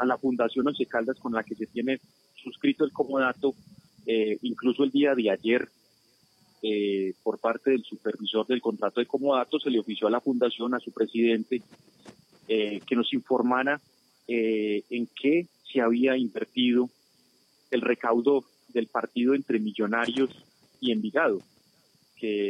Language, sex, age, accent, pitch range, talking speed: Spanish, male, 30-49, Colombian, 110-130 Hz, 150 wpm